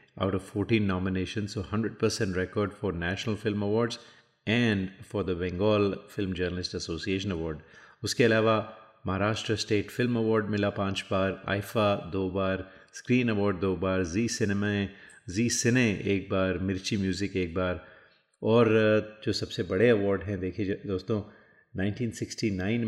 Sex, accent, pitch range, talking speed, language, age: male, native, 95-110 Hz, 140 wpm, Hindi, 30-49